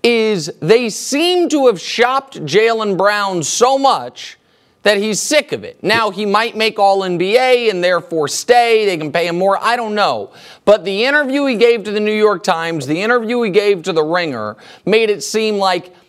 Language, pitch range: English, 180-235 Hz